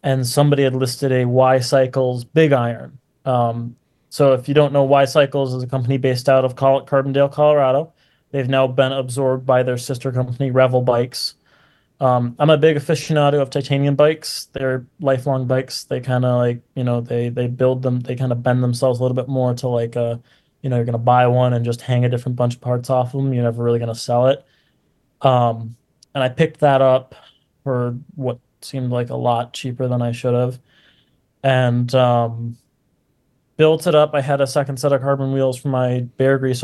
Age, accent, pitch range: 20-39, American, 125-140 Hz